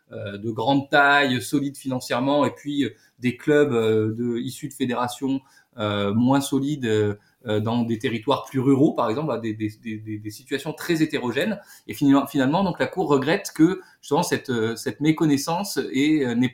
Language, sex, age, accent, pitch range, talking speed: French, male, 20-39, French, 125-155 Hz, 150 wpm